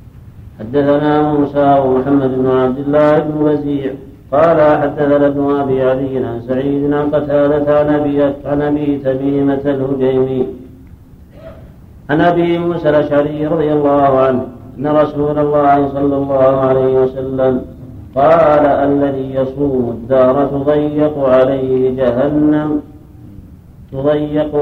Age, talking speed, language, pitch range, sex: 50-69, 100 wpm, Arabic, 130-150 Hz, male